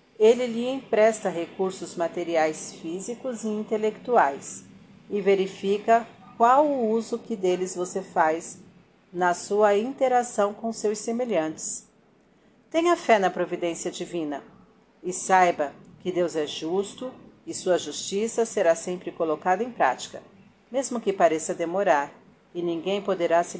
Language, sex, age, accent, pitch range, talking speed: Portuguese, female, 50-69, Brazilian, 175-220 Hz, 125 wpm